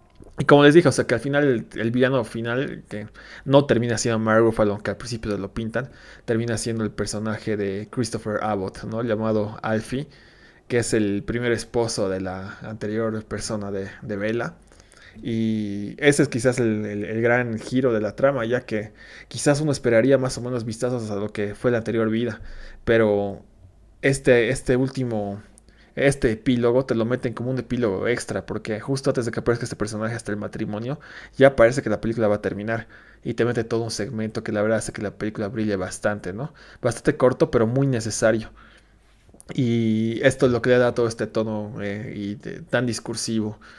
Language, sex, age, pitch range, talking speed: Spanish, male, 20-39, 105-125 Hz, 190 wpm